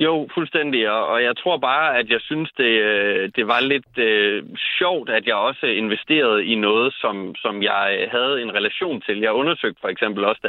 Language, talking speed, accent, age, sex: Danish, 195 wpm, native, 30-49, male